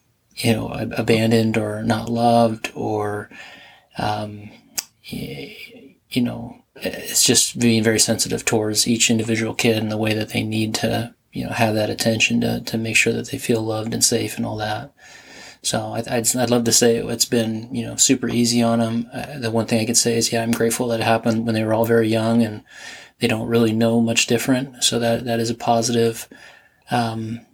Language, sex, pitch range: English, male, 110-120 Hz